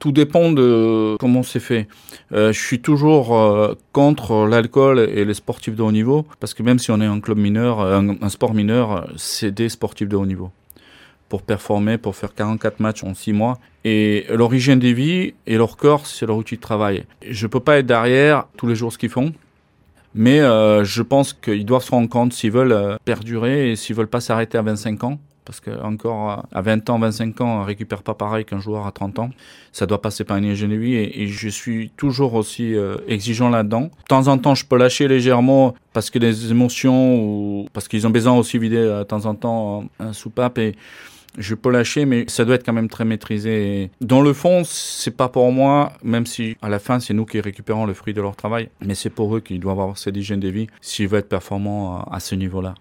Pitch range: 105-125 Hz